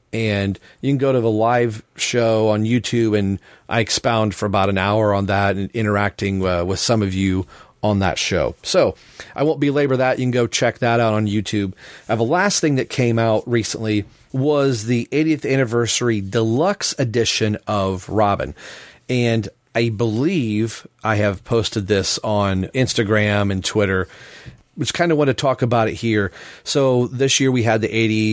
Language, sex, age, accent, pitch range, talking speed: English, male, 40-59, American, 105-120 Hz, 180 wpm